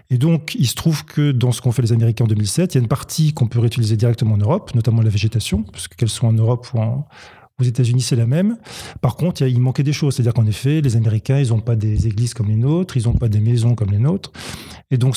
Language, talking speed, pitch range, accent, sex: French, 290 wpm, 115-140 Hz, French, male